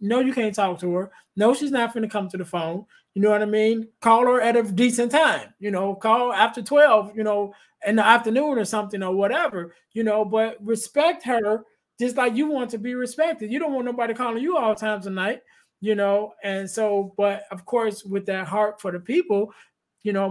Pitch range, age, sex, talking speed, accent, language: 180-225 Hz, 20-39, male, 230 wpm, American, English